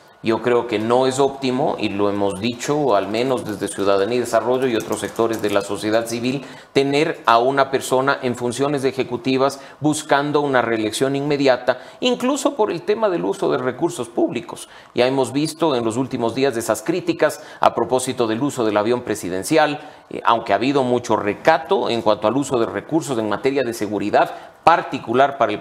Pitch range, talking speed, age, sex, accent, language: 115-140 Hz, 180 wpm, 40-59, male, Mexican, English